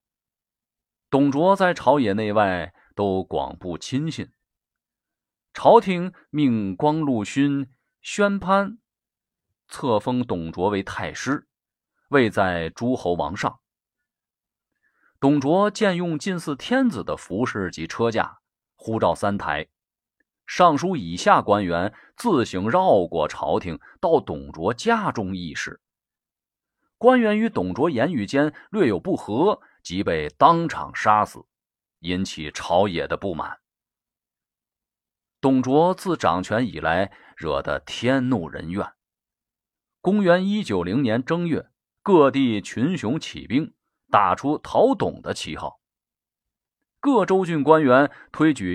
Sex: male